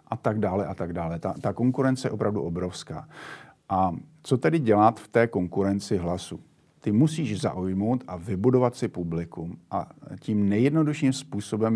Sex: male